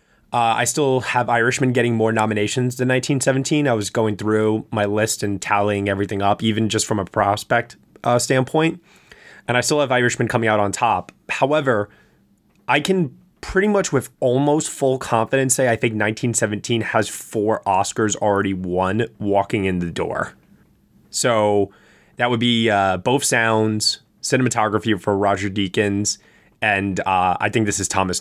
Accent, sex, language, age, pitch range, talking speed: American, male, English, 20-39, 105-125 Hz, 160 wpm